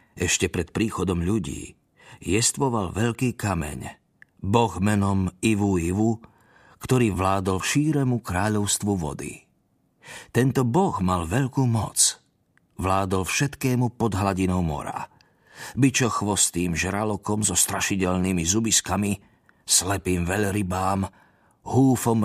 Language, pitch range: Slovak, 95-115 Hz